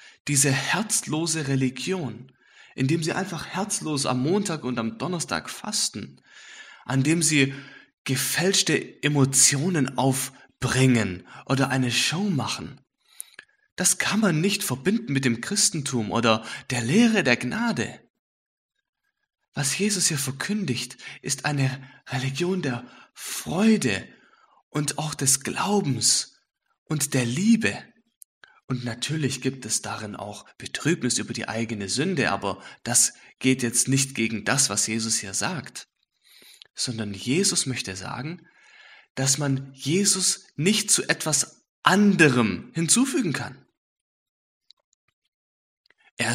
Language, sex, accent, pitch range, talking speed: English, male, German, 120-180 Hz, 115 wpm